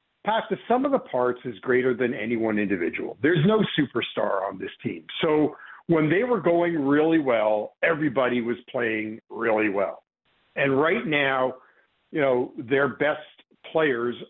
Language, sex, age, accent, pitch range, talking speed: English, male, 50-69, American, 130-175 Hz, 155 wpm